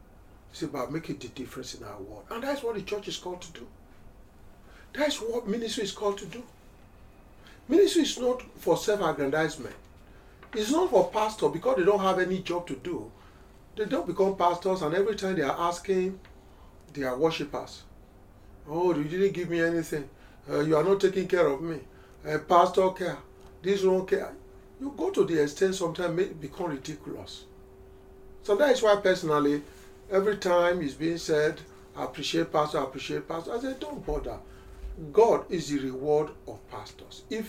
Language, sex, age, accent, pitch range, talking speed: English, male, 50-69, Nigerian, 150-215 Hz, 180 wpm